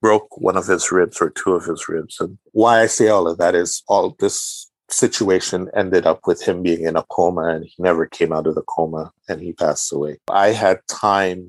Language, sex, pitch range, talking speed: English, male, 85-100 Hz, 230 wpm